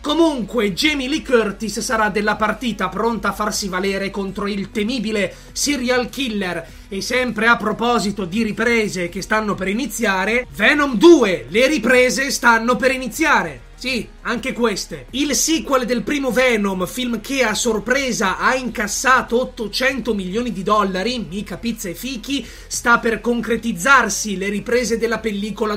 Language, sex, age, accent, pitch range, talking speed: Italian, male, 30-49, native, 195-245 Hz, 145 wpm